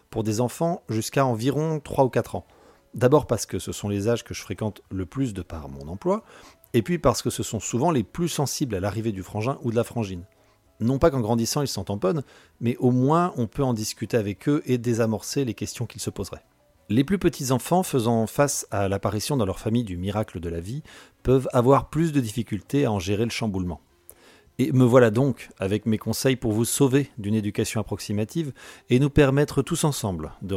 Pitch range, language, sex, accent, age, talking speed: 100-135 Hz, French, male, French, 40-59, 220 wpm